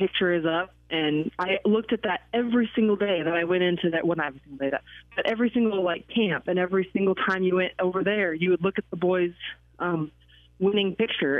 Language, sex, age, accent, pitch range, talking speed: English, female, 20-39, American, 165-200 Hz, 225 wpm